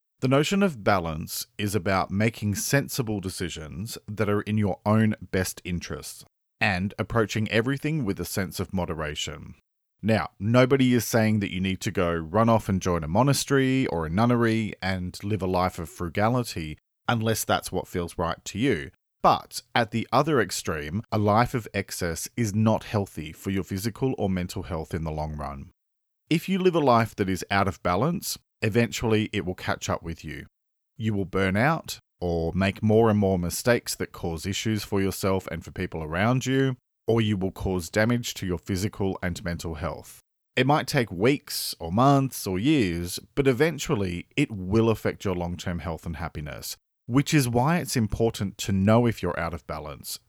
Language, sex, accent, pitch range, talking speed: English, male, Australian, 90-115 Hz, 185 wpm